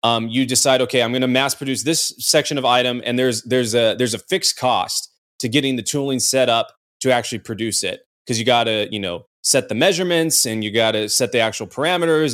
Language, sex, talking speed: English, male, 235 wpm